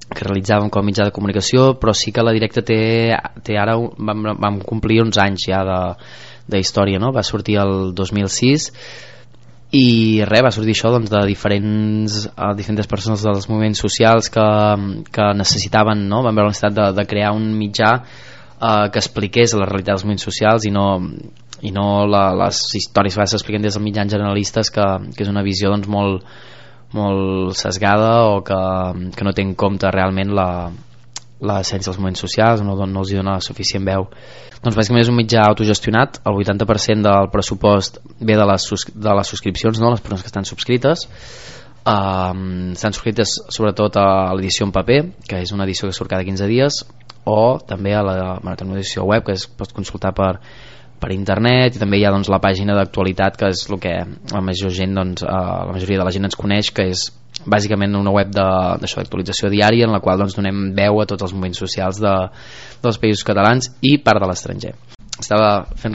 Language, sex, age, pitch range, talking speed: Spanish, male, 20-39, 95-110 Hz, 190 wpm